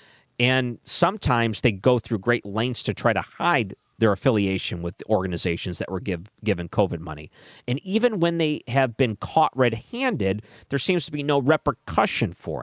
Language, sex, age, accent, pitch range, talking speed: English, male, 40-59, American, 95-140 Hz, 180 wpm